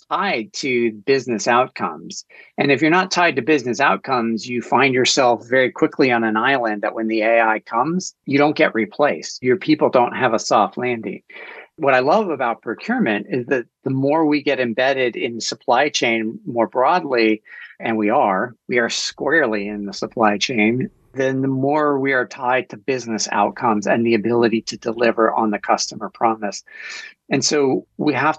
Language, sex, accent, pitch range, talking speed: English, male, American, 110-135 Hz, 180 wpm